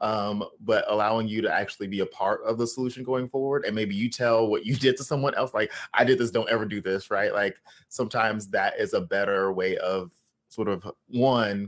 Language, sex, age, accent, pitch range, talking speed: English, male, 20-39, American, 95-110 Hz, 225 wpm